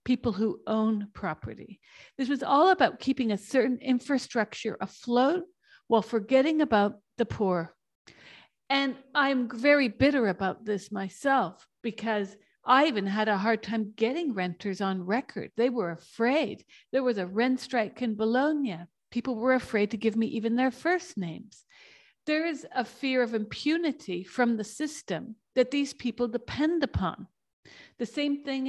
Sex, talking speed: female, 155 wpm